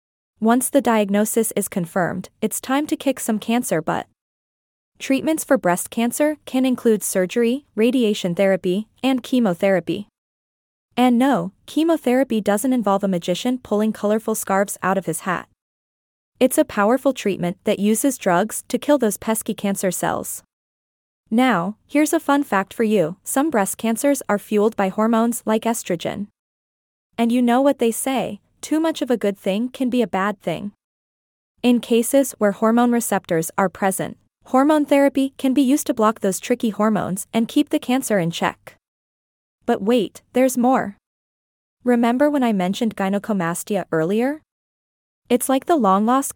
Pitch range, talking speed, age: 195-255 Hz, 155 wpm, 20-39